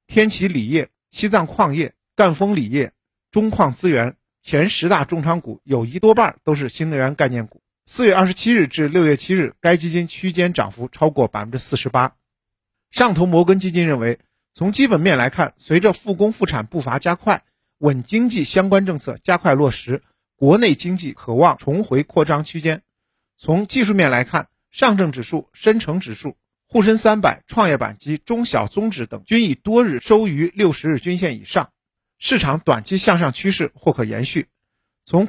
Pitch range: 135-195 Hz